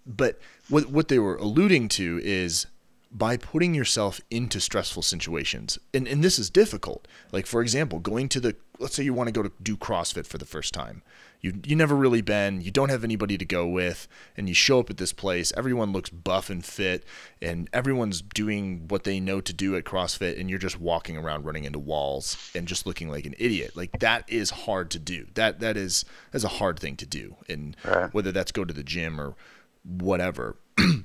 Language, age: English, 30-49